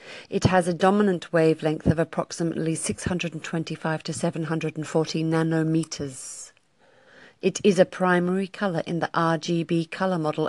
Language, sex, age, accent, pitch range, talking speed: English, female, 40-59, British, 160-185 Hz, 120 wpm